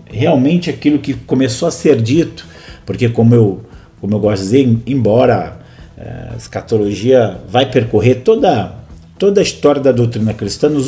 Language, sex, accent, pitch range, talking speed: Portuguese, male, Brazilian, 105-135 Hz, 155 wpm